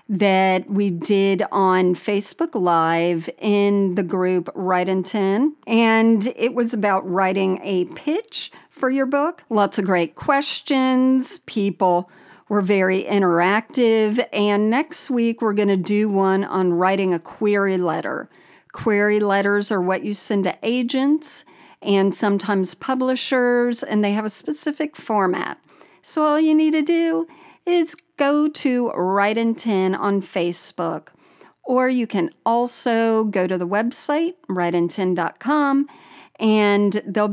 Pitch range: 190-255 Hz